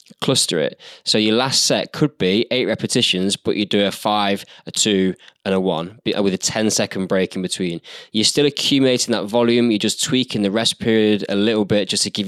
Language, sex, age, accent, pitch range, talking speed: English, male, 10-29, British, 95-110 Hz, 215 wpm